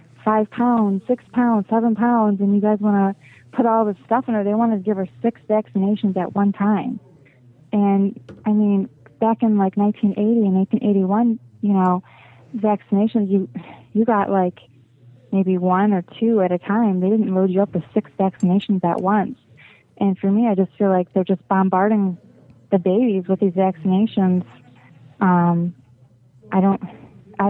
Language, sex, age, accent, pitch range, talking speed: English, female, 30-49, American, 180-210 Hz, 175 wpm